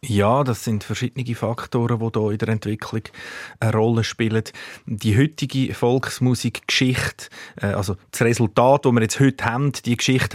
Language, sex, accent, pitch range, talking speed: German, male, Austrian, 110-125 Hz, 150 wpm